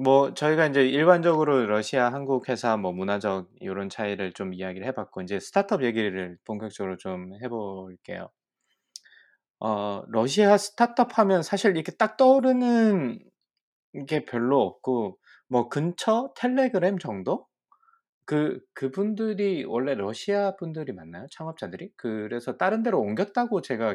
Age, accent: 20-39, native